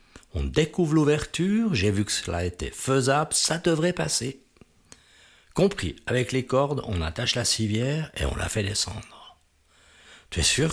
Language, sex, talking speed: French, male, 155 wpm